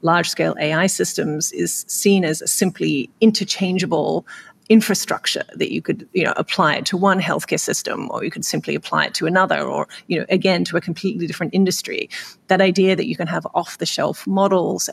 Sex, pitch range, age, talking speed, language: female, 170-200 Hz, 30-49, 185 wpm, English